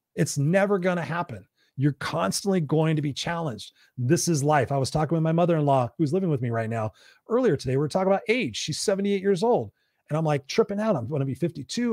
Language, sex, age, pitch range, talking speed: English, male, 30-49, 135-170 Hz, 235 wpm